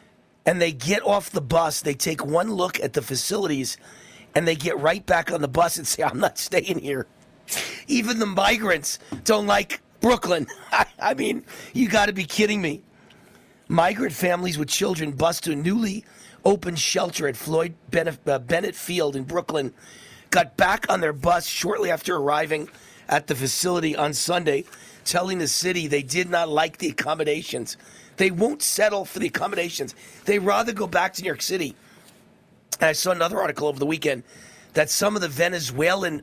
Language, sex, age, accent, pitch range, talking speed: English, male, 40-59, American, 150-190 Hz, 180 wpm